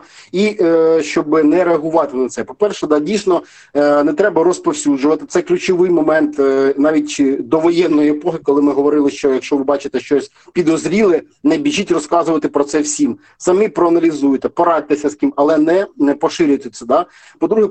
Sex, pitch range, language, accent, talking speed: male, 145-180 Hz, Ukrainian, native, 165 wpm